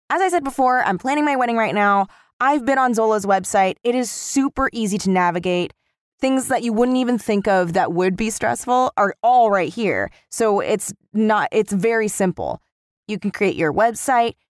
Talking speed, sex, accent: 195 wpm, female, American